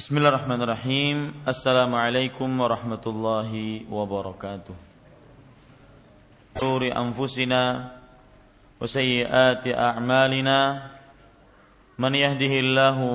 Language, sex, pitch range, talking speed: Malay, male, 120-135 Hz, 50 wpm